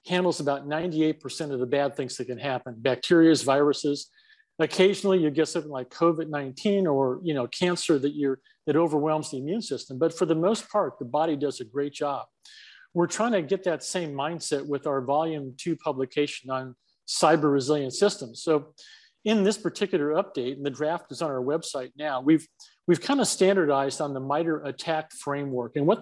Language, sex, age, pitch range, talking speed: English, male, 40-59, 140-175 Hz, 185 wpm